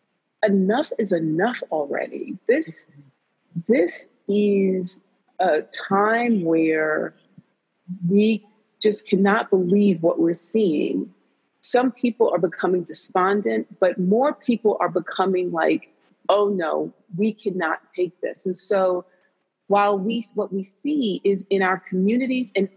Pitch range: 180-225 Hz